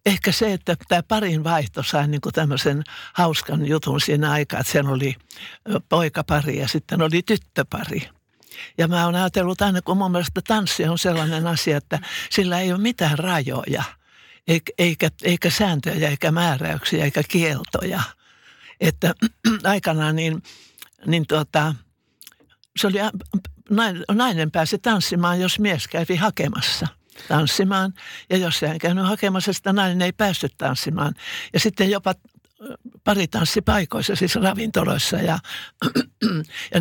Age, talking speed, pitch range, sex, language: 60-79, 135 wpm, 150-190 Hz, male, Finnish